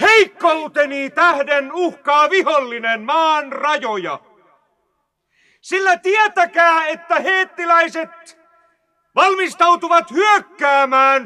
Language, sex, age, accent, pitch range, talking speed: Finnish, male, 40-59, native, 285-370 Hz, 65 wpm